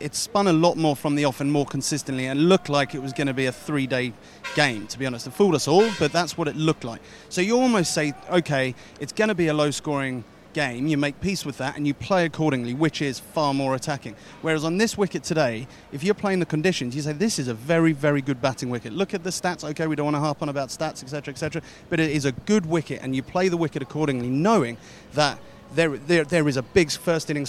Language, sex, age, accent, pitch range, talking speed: English, male, 30-49, British, 140-185 Hz, 255 wpm